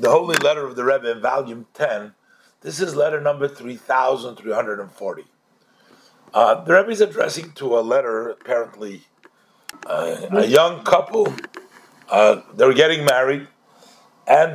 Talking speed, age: 130 wpm, 50-69